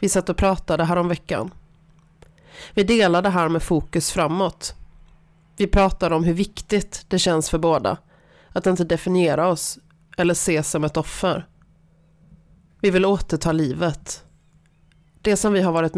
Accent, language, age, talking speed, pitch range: native, Swedish, 30-49, 150 wpm, 160-180 Hz